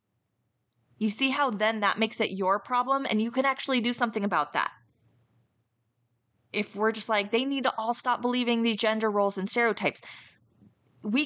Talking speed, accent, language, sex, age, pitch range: 175 wpm, American, English, female, 20-39, 170-230 Hz